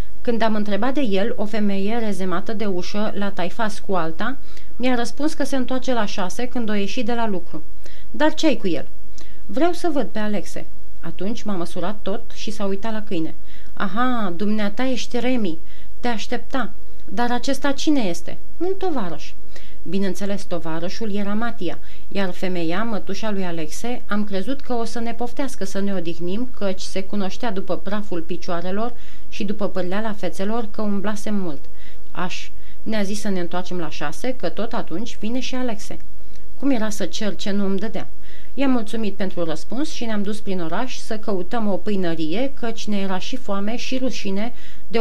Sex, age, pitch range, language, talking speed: female, 30-49, 190-240 Hz, Romanian, 180 wpm